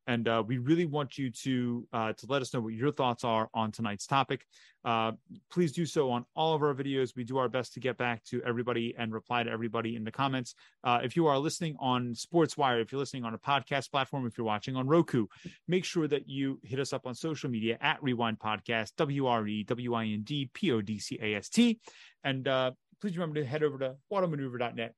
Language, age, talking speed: English, 30-49, 240 wpm